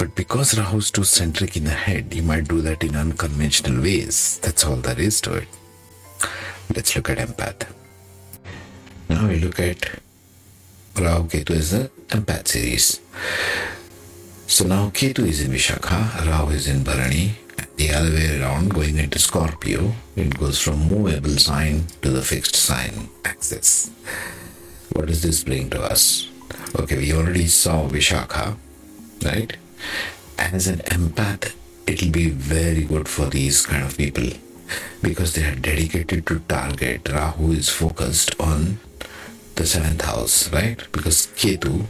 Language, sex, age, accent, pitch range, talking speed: English, male, 60-79, Indian, 75-95 Hz, 150 wpm